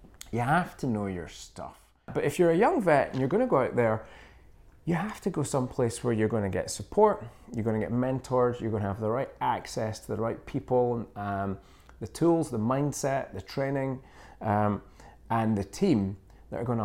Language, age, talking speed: English, 30-49, 200 wpm